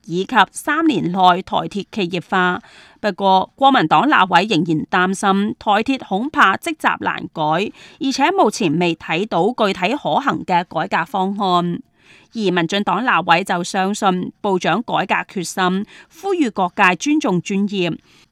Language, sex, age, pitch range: Chinese, female, 30-49, 180-250 Hz